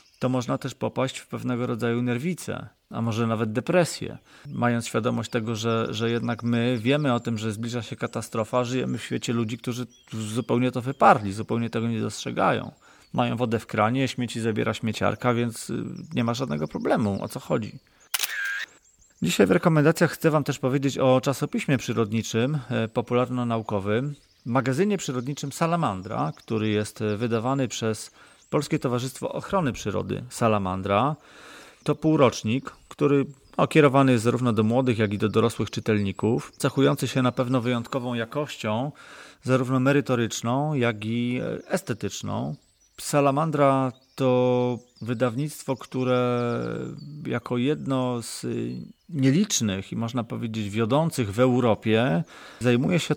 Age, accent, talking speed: 30-49, native, 130 wpm